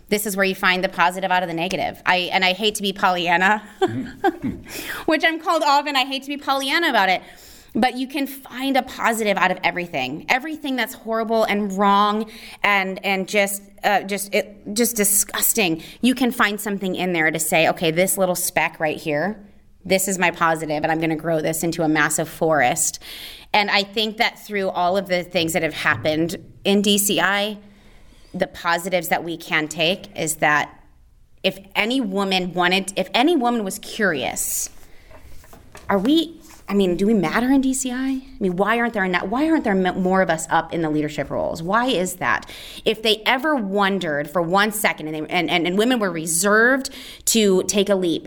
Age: 30-49